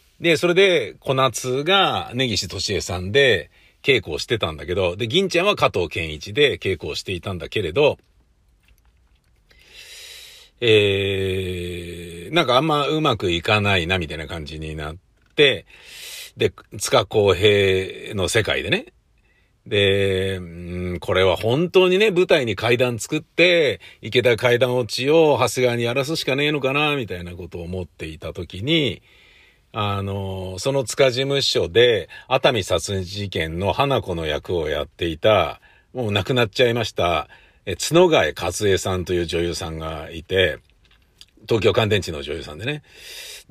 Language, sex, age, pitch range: Japanese, male, 50-69, 90-140 Hz